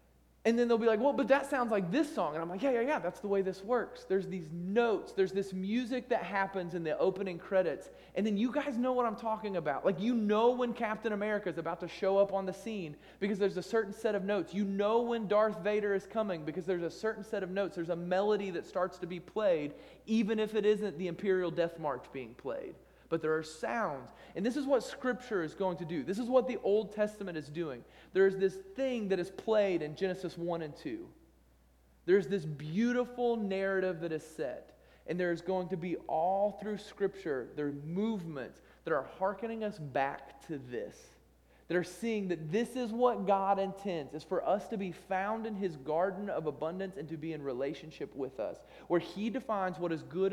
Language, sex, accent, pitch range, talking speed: English, male, American, 165-210 Hz, 225 wpm